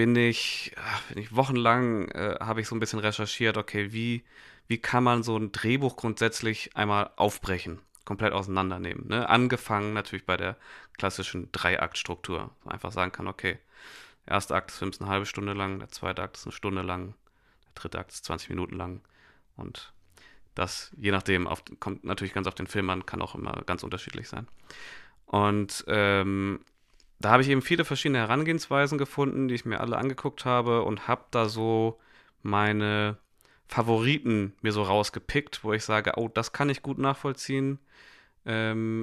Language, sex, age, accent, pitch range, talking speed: German, male, 30-49, German, 100-120 Hz, 175 wpm